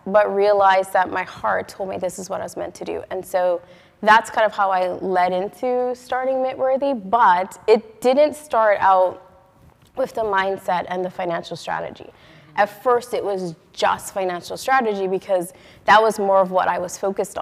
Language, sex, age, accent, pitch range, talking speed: English, female, 20-39, American, 180-215 Hz, 185 wpm